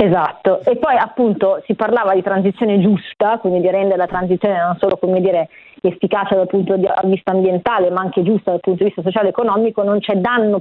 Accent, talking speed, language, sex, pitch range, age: native, 210 wpm, Italian, female, 180-215 Hz, 30-49